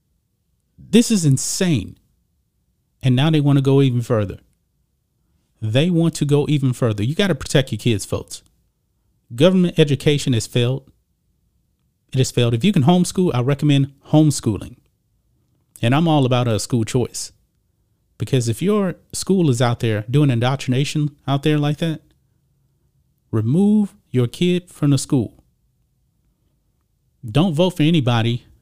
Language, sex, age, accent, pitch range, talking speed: English, male, 30-49, American, 105-145 Hz, 145 wpm